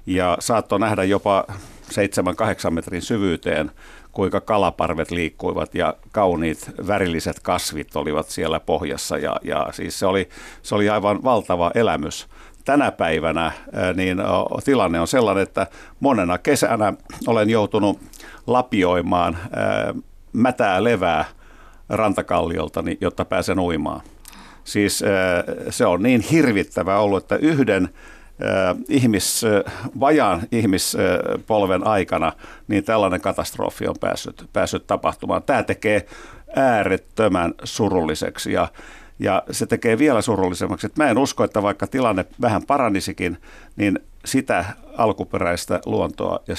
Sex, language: male, Finnish